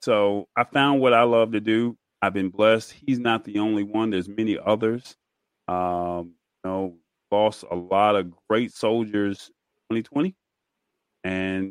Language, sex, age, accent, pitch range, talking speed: English, male, 30-49, American, 100-125 Hz, 160 wpm